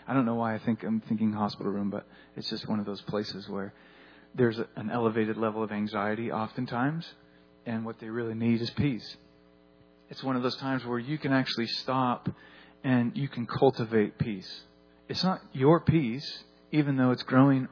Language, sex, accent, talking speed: English, male, American, 185 wpm